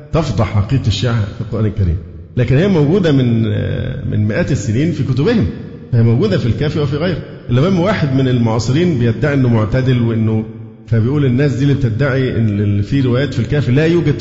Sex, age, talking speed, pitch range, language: male, 50-69, 175 wpm, 110-145 Hz, Arabic